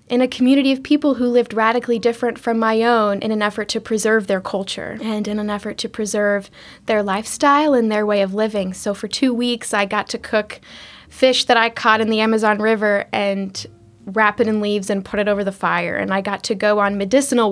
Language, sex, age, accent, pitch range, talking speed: English, female, 10-29, American, 205-230 Hz, 225 wpm